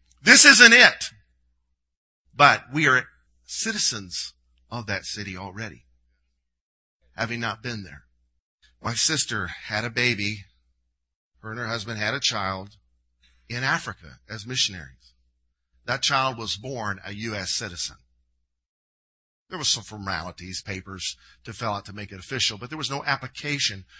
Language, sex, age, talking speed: English, male, 50-69, 140 wpm